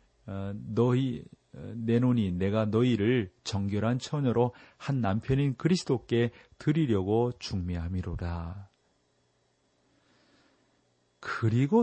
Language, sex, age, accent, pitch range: Korean, male, 40-59, native, 100-130 Hz